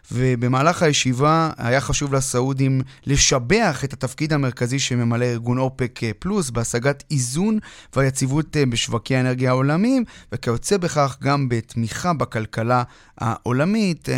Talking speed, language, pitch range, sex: 105 wpm, Hebrew, 120-150 Hz, male